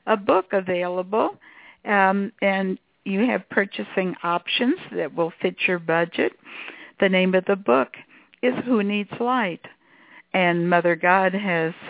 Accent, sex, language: American, female, English